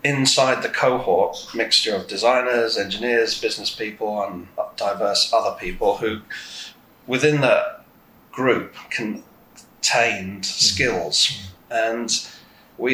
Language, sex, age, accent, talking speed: English, male, 30-49, British, 95 wpm